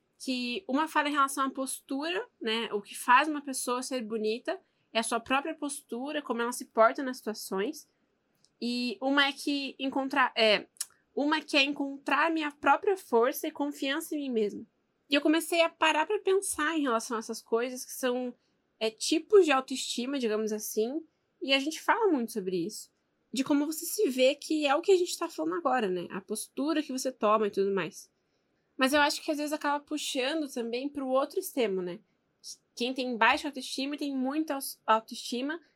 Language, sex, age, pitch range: Portuguese, female, 10-29, 235-295 Hz